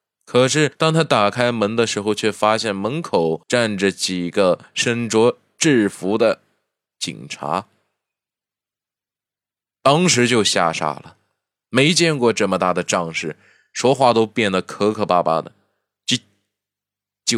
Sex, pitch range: male, 100-130 Hz